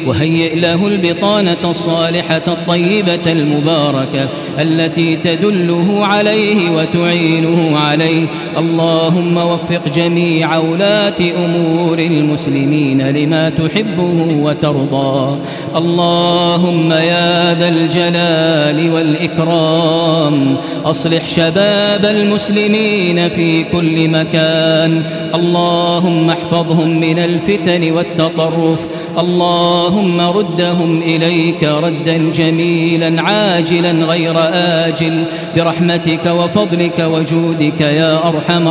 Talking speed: 80 wpm